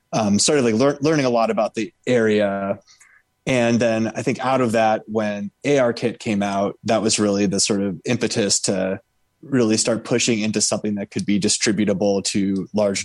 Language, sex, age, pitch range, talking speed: English, male, 20-39, 100-120 Hz, 180 wpm